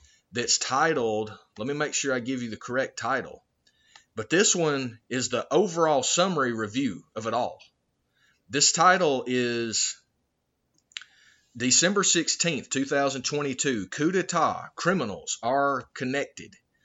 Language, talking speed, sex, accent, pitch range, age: English, 120 wpm, male, American, 115-150 Hz, 30-49